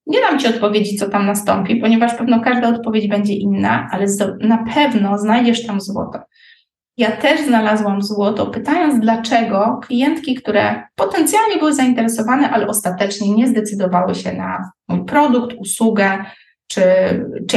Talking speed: 140 wpm